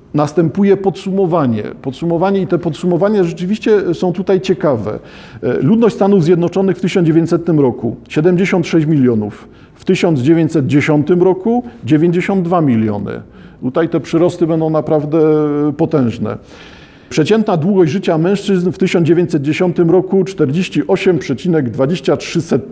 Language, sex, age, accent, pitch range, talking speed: Polish, male, 50-69, native, 140-180 Hz, 90 wpm